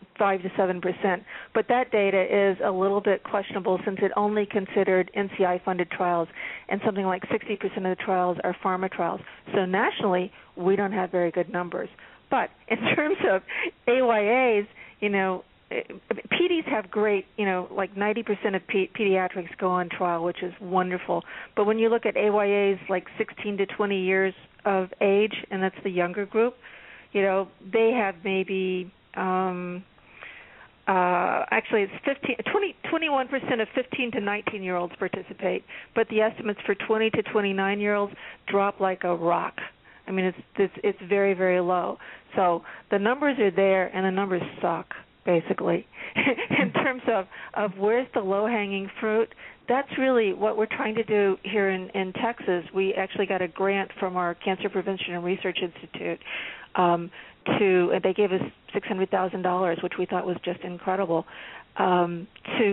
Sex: female